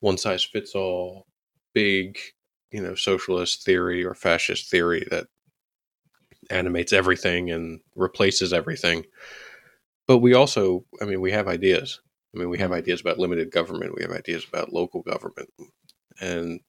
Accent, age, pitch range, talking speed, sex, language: American, 20-39, 90-110 Hz, 145 wpm, male, English